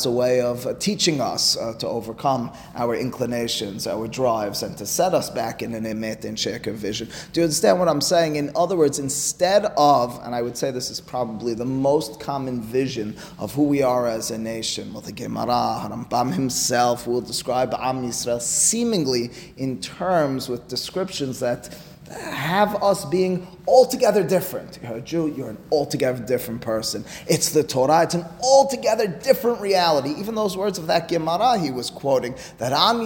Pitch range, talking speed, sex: 125-180 Hz, 180 wpm, male